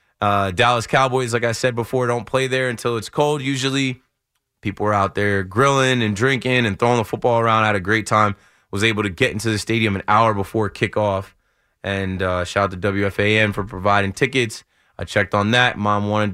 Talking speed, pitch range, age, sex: 210 wpm, 100-120 Hz, 20-39, male